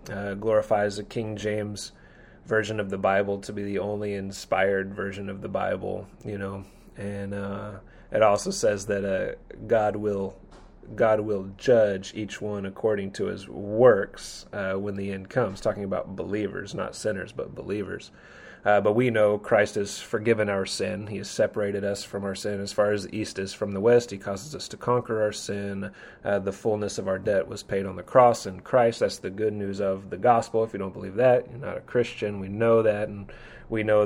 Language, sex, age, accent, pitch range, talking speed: English, male, 30-49, American, 100-110 Hz, 205 wpm